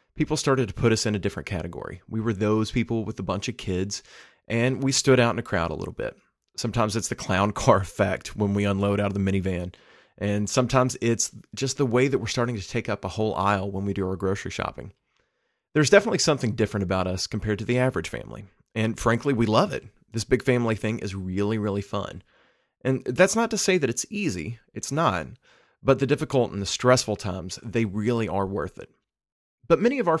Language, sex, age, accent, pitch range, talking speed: English, male, 30-49, American, 100-130 Hz, 225 wpm